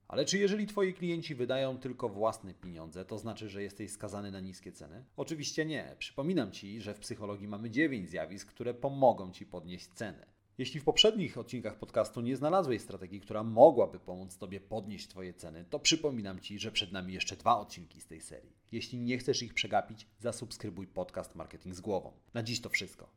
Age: 30-49